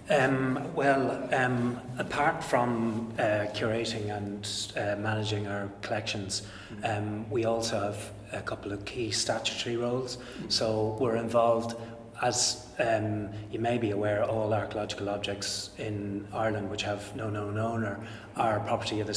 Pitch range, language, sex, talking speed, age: 105-115 Hz, English, male, 140 wpm, 30-49